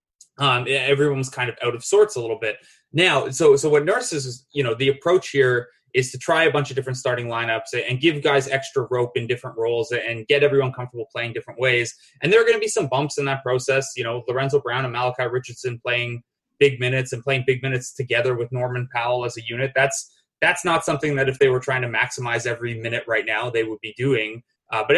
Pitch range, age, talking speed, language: 120-145 Hz, 20-39, 235 wpm, English